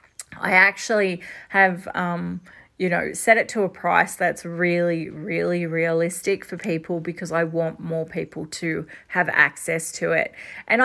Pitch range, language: 170-200 Hz, English